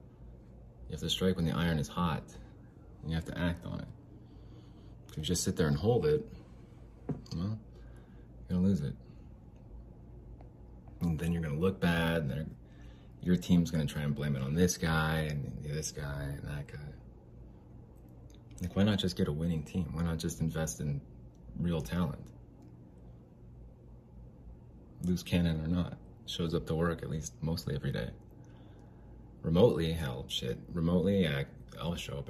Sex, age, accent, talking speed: male, 30-49, American, 170 wpm